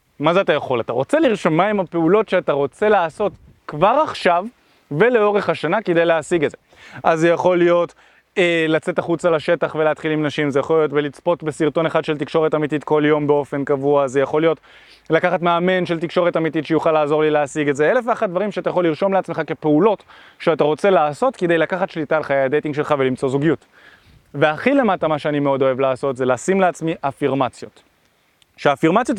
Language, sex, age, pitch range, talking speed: Hebrew, male, 20-39, 155-195 Hz, 180 wpm